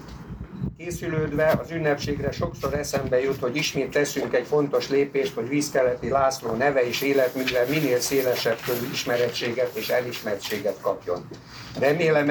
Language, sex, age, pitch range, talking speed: Hungarian, male, 60-79, 125-145 Hz, 120 wpm